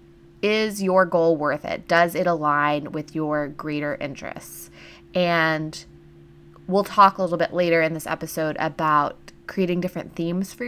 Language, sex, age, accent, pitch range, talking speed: English, female, 20-39, American, 160-190 Hz, 150 wpm